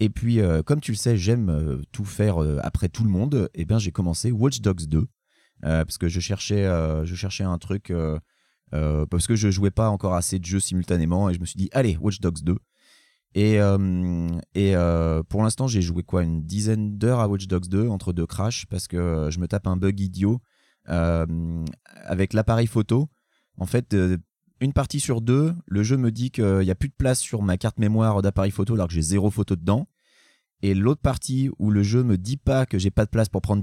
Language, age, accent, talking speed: French, 30-49, French, 235 wpm